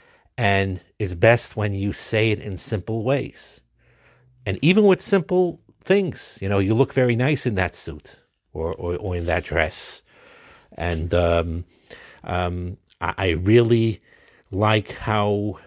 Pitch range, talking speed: 90-110 Hz, 145 wpm